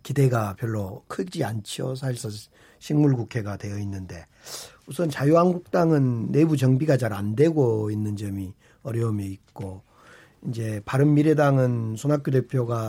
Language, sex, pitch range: Korean, male, 110-150 Hz